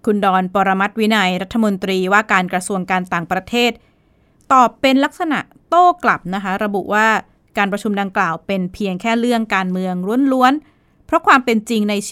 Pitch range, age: 195-250 Hz, 20-39